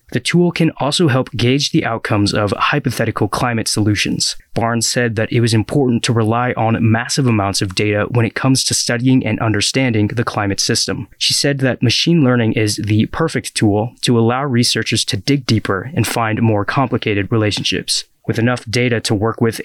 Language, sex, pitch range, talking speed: English, male, 110-130 Hz, 185 wpm